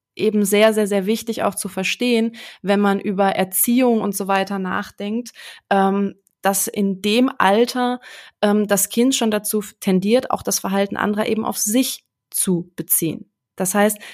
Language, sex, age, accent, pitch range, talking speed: German, female, 20-39, German, 195-230 Hz, 155 wpm